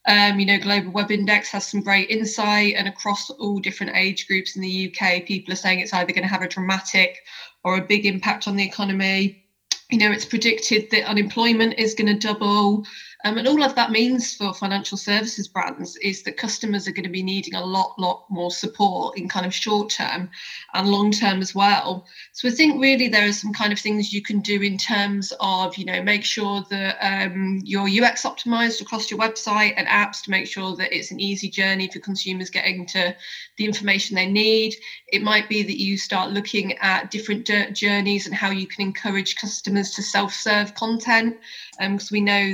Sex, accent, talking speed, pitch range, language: female, British, 205 wpm, 195-220 Hz, English